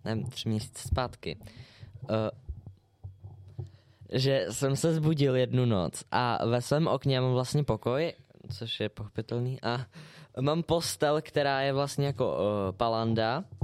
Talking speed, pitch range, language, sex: 130 wpm, 115-145 Hz, Czech, male